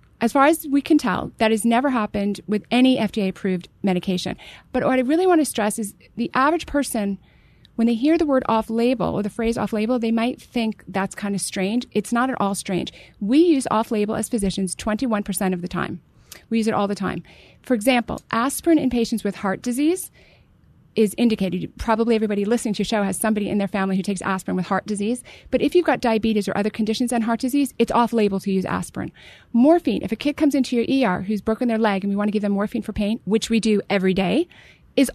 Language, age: English, 30-49